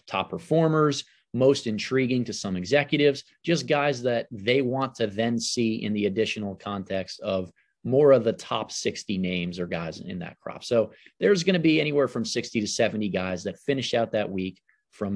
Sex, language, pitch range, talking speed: male, English, 105-145 Hz, 190 wpm